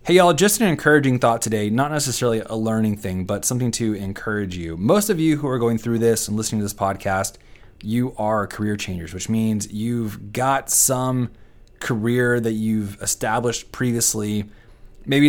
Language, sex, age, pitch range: English, male, 30-49, 100-120 Hz